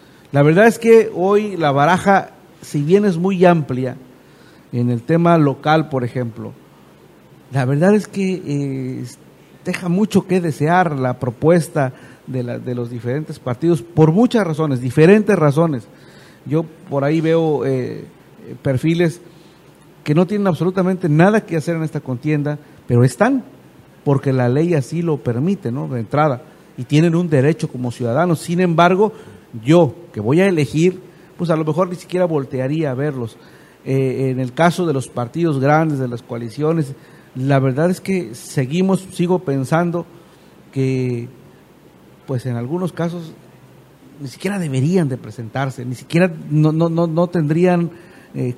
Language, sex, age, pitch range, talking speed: Spanish, male, 50-69, 130-175 Hz, 155 wpm